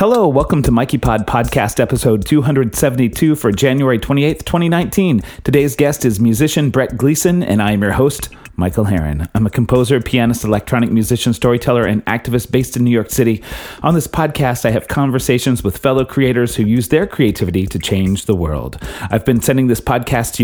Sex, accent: male, American